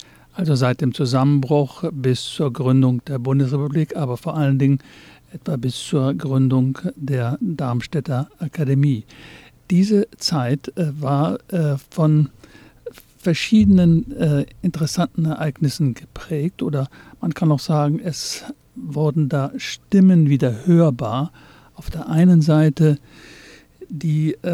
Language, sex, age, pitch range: English, male, 50-69, 140-180 Hz